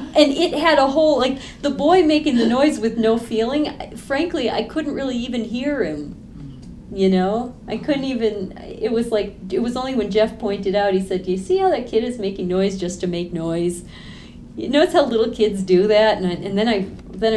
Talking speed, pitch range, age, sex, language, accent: 225 wpm, 190-240 Hz, 40-59, female, English, American